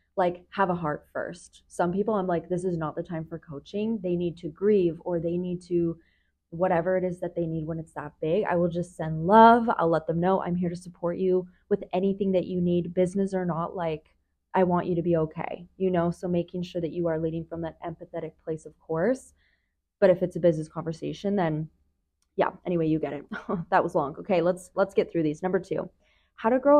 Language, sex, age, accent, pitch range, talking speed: English, female, 20-39, American, 165-195 Hz, 235 wpm